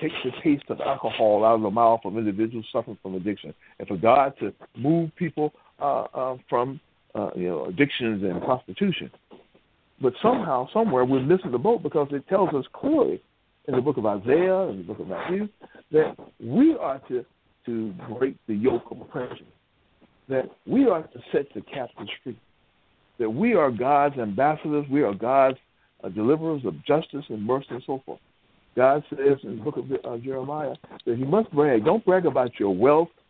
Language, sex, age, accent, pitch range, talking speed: English, male, 60-79, American, 115-165 Hz, 185 wpm